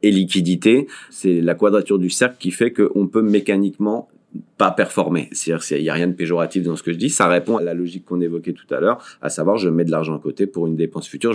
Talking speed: 260 wpm